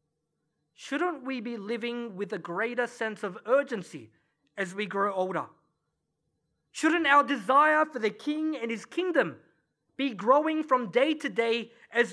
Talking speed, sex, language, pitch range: 150 wpm, male, English, 180-250 Hz